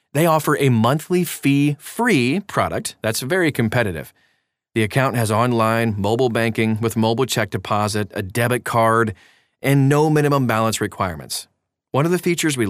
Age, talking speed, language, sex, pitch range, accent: 30-49, 150 wpm, English, male, 110-145 Hz, American